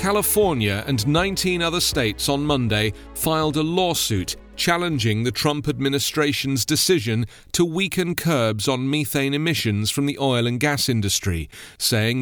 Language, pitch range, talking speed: English, 115-155 Hz, 140 wpm